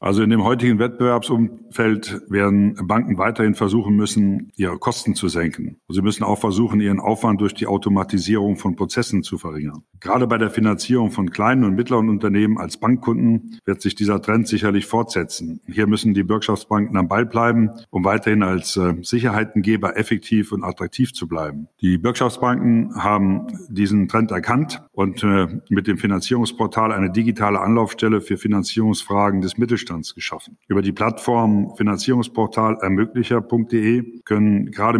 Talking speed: 145 wpm